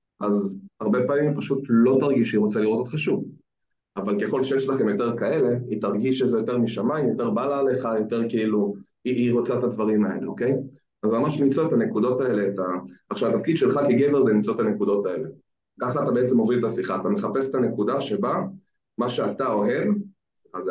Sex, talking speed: male, 195 wpm